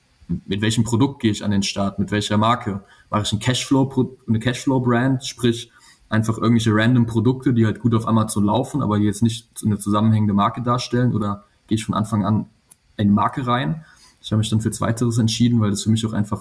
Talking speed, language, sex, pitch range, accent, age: 210 wpm, German, male, 105-120 Hz, German, 20-39